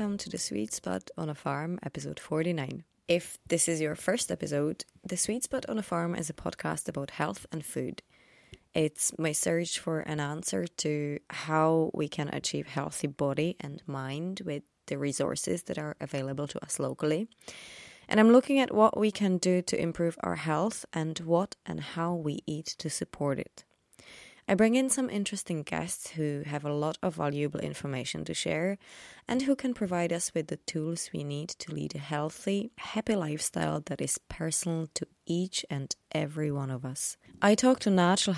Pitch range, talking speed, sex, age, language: 150-195 Hz, 185 wpm, female, 20-39, English